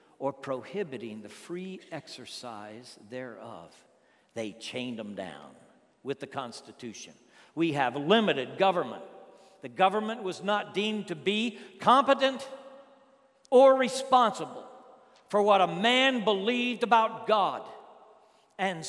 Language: English